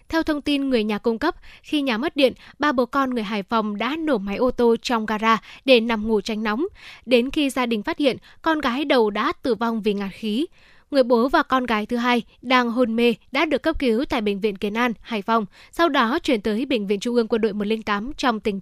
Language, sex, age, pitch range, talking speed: Vietnamese, female, 10-29, 225-280 Hz, 250 wpm